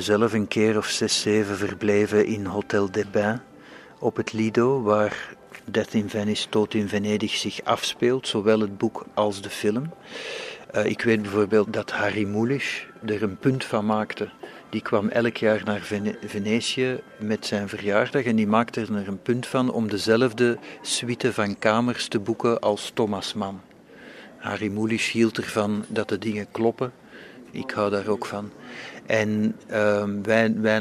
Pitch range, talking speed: 105-115 Hz, 165 wpm